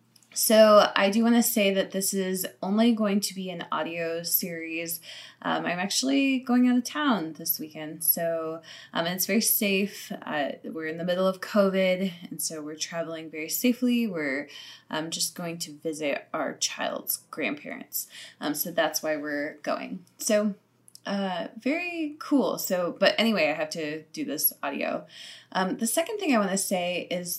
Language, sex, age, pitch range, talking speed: English, female, 20-39, 160-215 Hz, 175 wpm